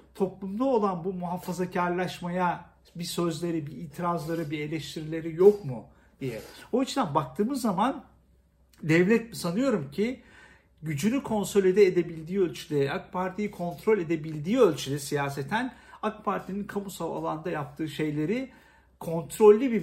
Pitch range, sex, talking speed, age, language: 150-195 Hz, male, 115 wpm, 50-69, Turkish